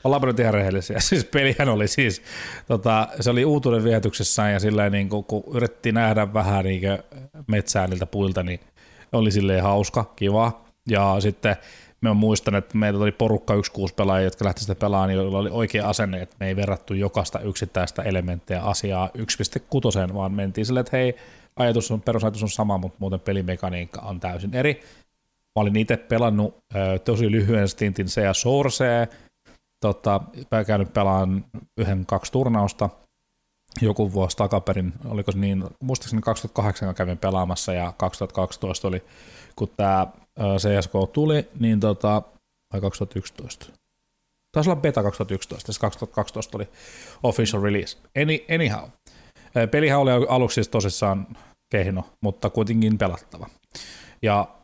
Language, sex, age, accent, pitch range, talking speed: Finnish, male, 30-49, native, 95-115 Hz, 140 wpm